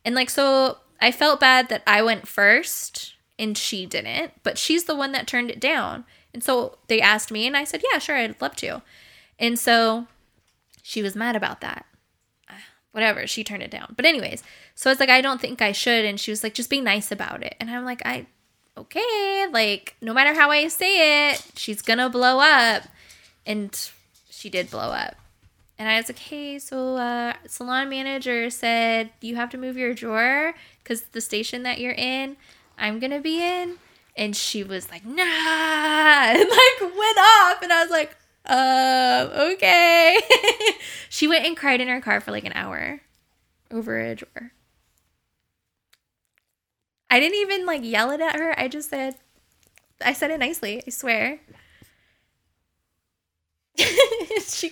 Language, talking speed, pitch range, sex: English, 180 wpm, 220-305 Hz, female